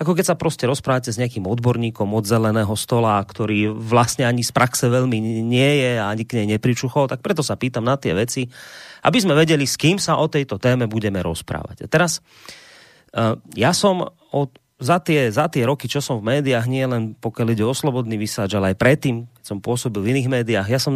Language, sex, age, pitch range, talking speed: Slovak, male, 30-49, 115-150 Hz, 210 wpm